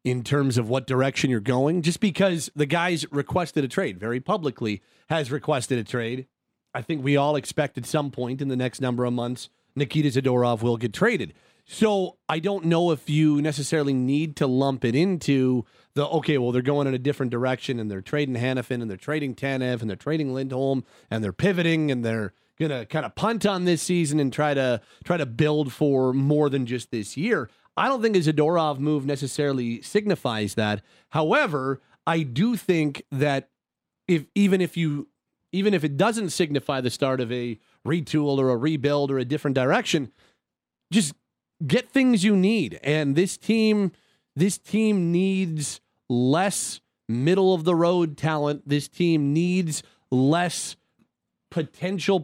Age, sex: 30-49, male